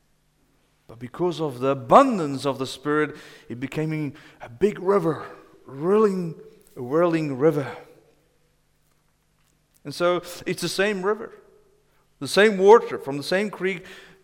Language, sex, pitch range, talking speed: English, male, 145-195 Hz, 120 wpm